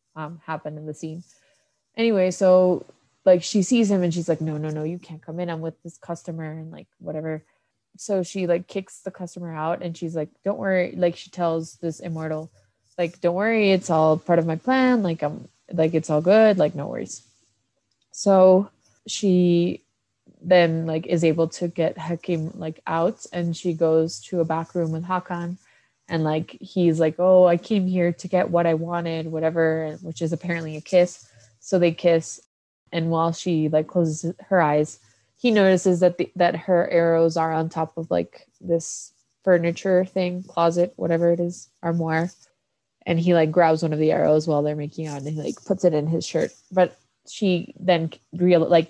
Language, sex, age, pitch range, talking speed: English, female, 20-39, 160-180 Hz, 195 wpm